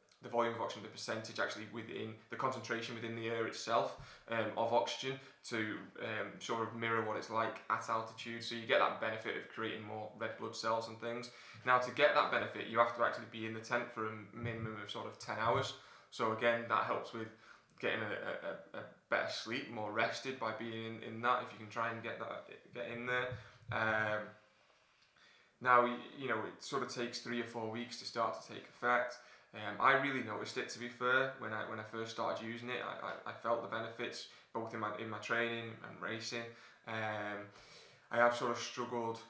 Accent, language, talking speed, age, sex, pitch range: British, English, 215 wpm, 20-39, male, 110-120 Hz